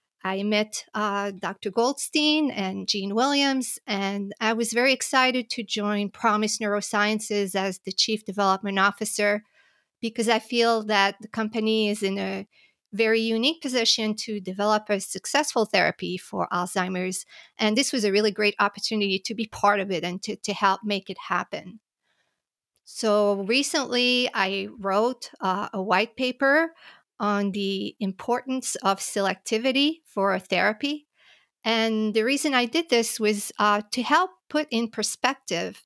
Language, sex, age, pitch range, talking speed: English, female, 40-59, 200-245 Hz, 150 wpm